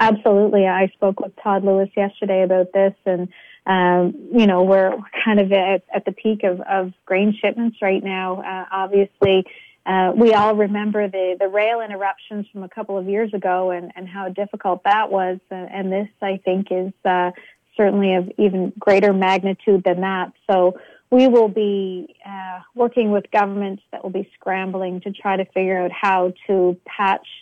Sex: female